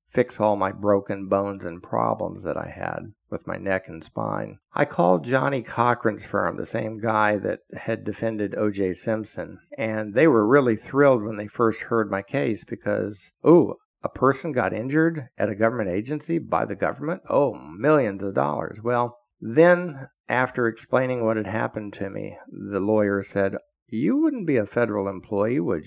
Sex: male